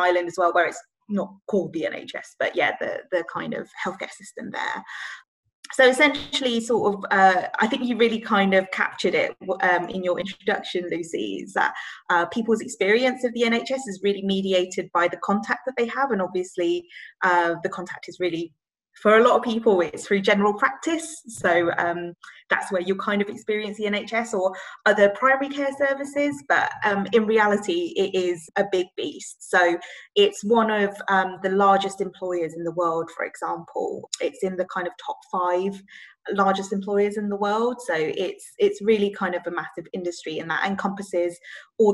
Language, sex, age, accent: English, female, 20-39, British